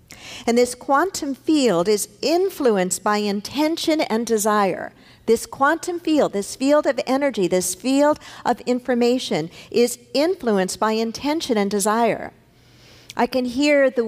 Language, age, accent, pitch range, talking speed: English, 50-69, American, 195-270 Hz, 130 wpm